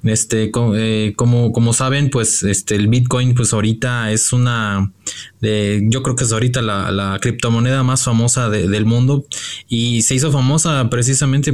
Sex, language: male, Spanish